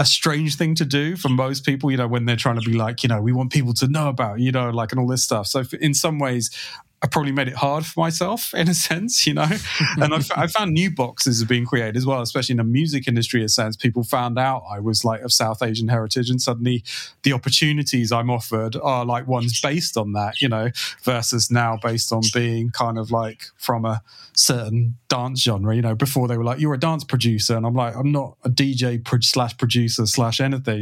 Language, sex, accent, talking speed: English, male, British, 245 wpm